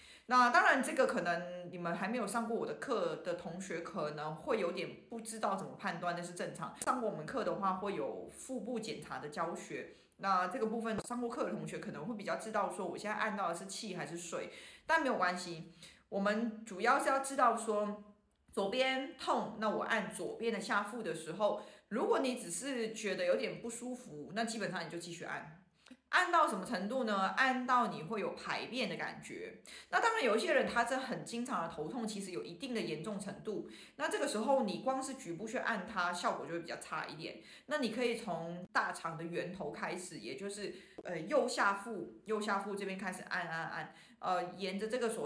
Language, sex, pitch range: Chinese, female, 180-245 Hz